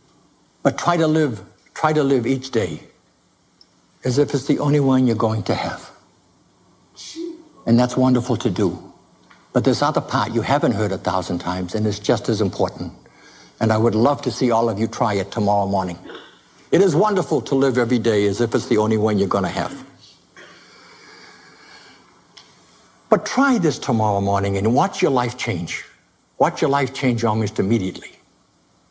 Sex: male